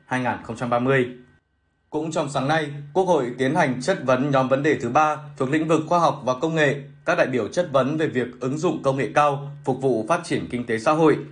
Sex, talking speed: male, 235 wpm